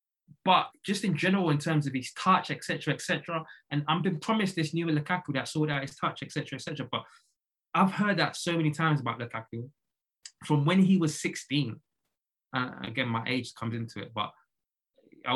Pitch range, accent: 130-160 Hz, British